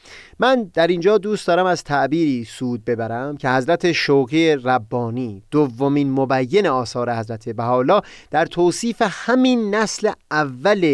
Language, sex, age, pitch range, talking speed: Persian, male, 30-49, 125-175 Hz, 125 wpm